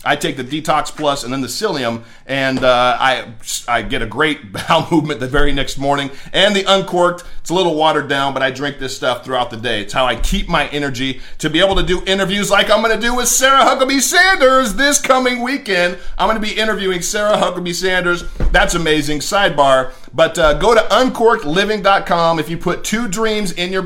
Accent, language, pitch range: American, English, 135-185 Hz